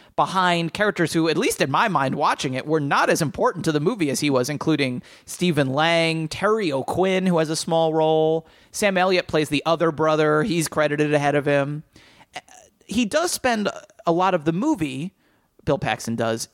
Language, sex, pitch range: English, male, 130-170 Hz